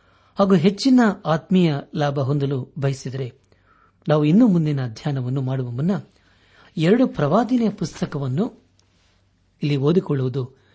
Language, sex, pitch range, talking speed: Kannada, male, 125-175 Hz, 95 wpm